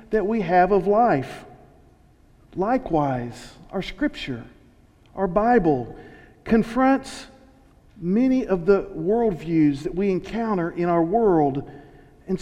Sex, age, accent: male, 50-69, American